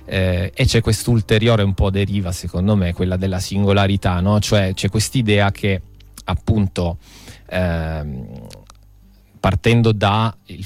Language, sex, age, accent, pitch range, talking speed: Italian, male, 30-49, native, 90-105 Hz, 120 wpm